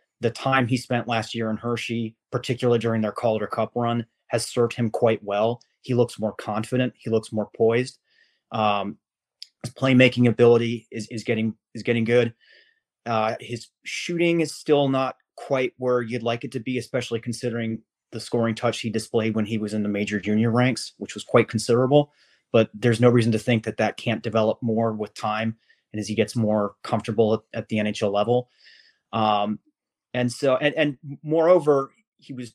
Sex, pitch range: male, 110-130 Hz